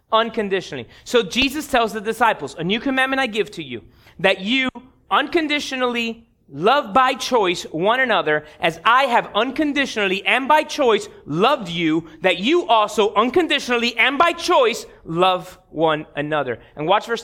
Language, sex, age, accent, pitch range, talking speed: English, male, 30-49, American, 220-330 Hz, 150 wpm